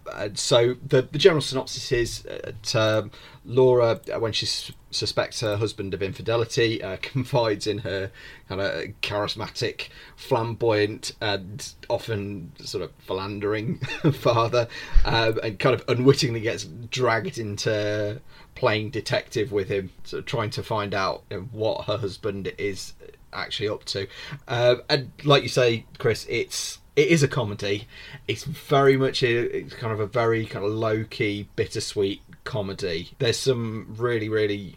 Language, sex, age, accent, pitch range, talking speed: English, male, 30-49, British, 100-125 Hz, 145 wpm